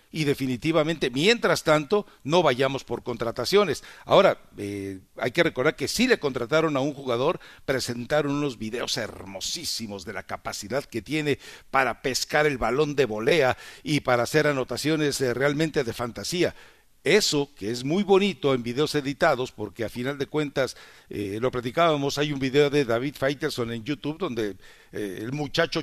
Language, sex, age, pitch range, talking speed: English, male, 60-79, 120-155 Hz, 165 wpm